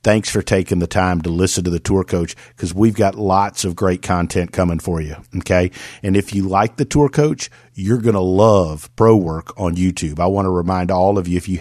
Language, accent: English, American